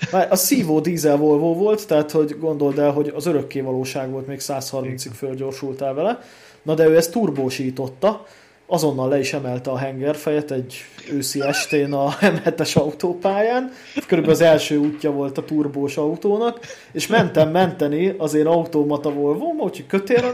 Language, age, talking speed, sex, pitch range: Hungarian, 20-39, 155 wpm, male, 140-180 Hz